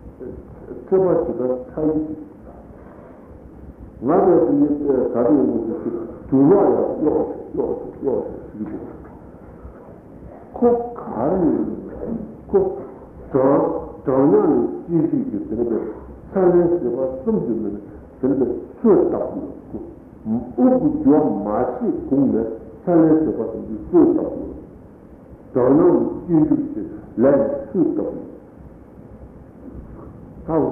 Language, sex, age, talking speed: Italian, male, 60-79, 45 wpm